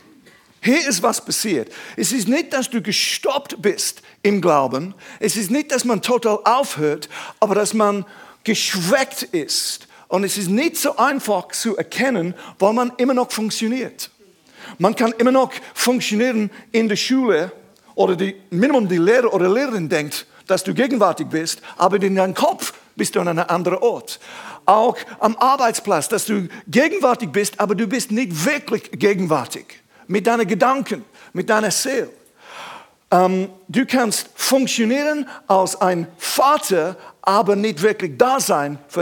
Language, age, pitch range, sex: German, 50-69, 190-250 Hz, male